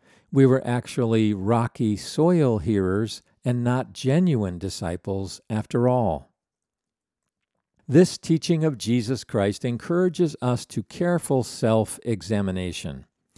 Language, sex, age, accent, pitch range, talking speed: English, male, 50-69, American, 105-140 Hz, 100 wpm